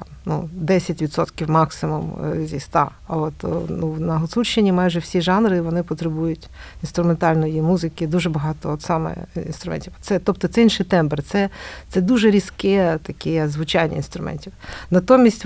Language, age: Ukrainian, 50-69